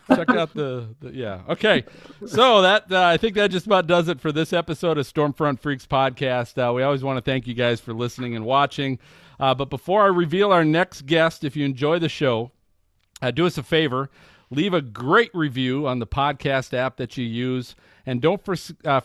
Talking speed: 215 wpm